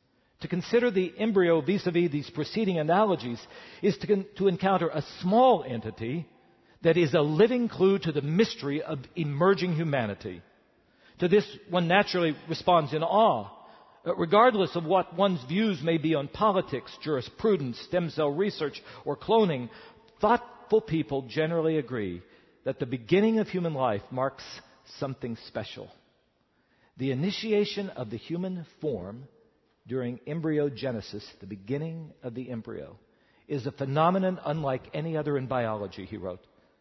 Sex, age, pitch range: male, 50-69, 130-185 Hz